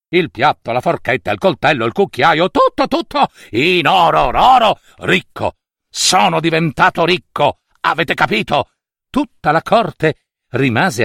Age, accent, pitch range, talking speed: 60-79, native, 140-230 Hz, 125 wpm